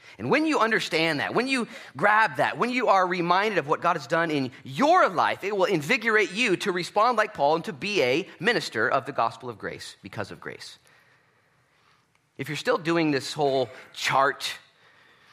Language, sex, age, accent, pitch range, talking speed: English, male, 30-49, American, 120-190 Hz, 190 wpm